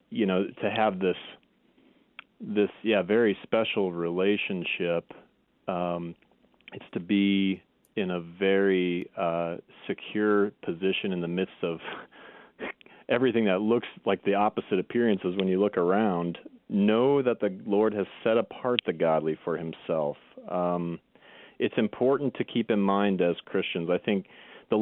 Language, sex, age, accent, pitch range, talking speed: English, male, 40-59, American, 90-110 Hz, 140 wpm